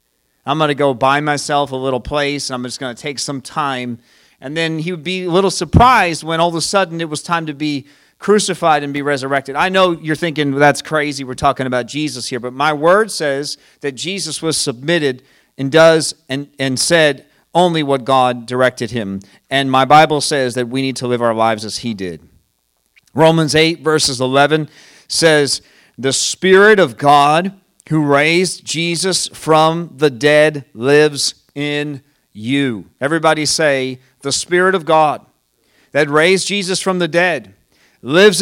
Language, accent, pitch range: English, American, 130-170 Hz